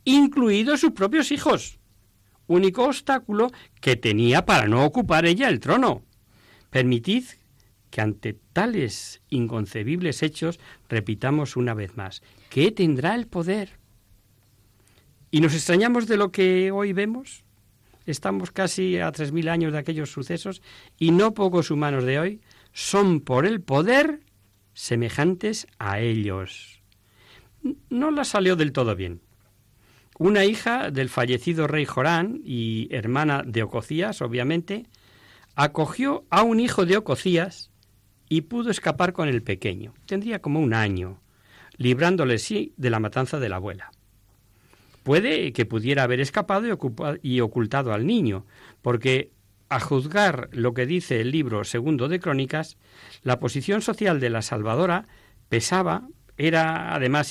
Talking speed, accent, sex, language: 135 wpm, Spanish, male, Spanish